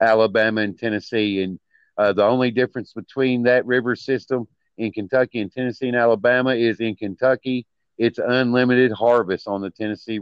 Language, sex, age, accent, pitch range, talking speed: English, male, 50-69, American, 105-120 Hz, 160 wpm